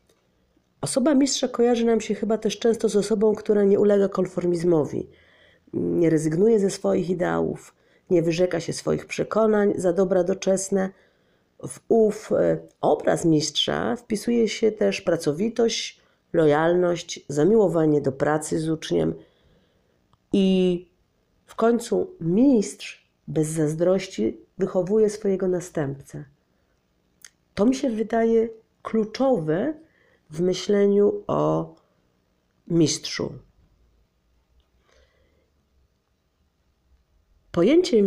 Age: 40-59